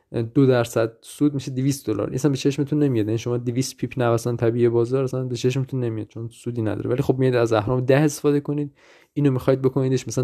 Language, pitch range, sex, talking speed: Persian, 115-135 Hz, male, 205 wpm